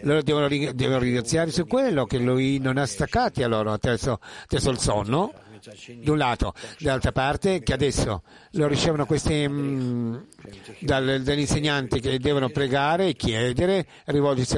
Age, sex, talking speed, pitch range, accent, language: 60-79, male, 130 wpm, 125-160 Hz, native, Italian